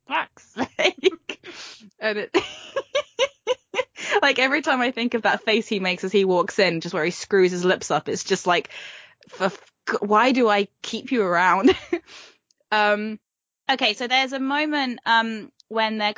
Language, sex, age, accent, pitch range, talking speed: English, female, 10-29, British, 185-220 Hz, 150 wpm